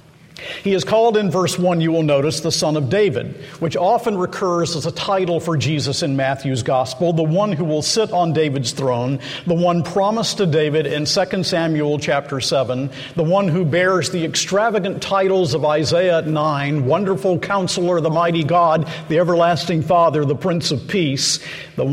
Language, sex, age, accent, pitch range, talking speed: English, male, 50-69, American, 150-180 Hz, 180 wpm